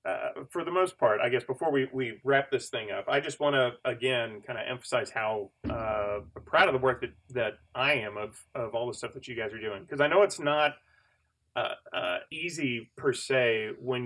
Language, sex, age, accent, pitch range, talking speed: English, male, 30-49, American, 120-150 Hz, 225 wpm